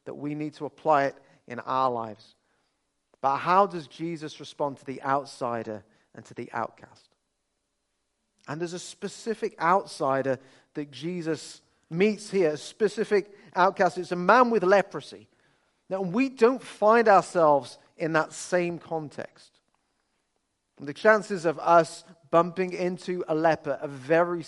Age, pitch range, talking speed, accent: 40-59, 155-200 Hz, 140 wpm, British